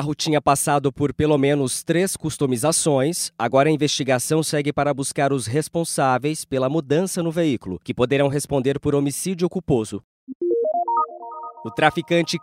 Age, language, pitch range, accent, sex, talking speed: 20-39, English, 135-160 Hz, Brazilian, male, 140 wpm